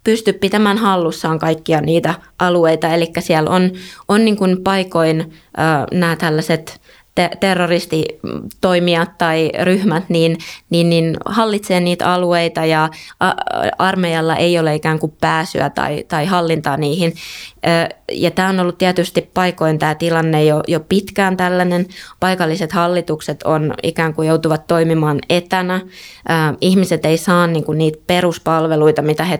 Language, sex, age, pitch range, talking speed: Finnish, female, 20-39, 160-180 Hz, 135 wpm